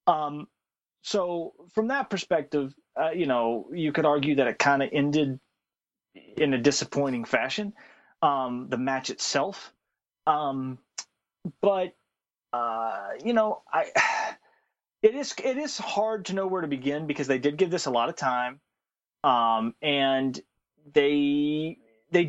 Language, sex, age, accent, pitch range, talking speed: English, male, 30-49, American, 145-215 Hz, 145 wpm